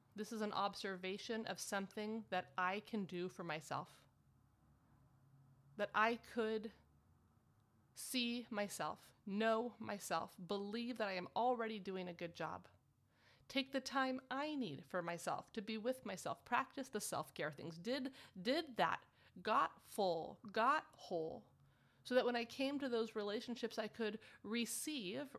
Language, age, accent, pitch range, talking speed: English, 30-49, American, 175-235 Hz, 145 wpm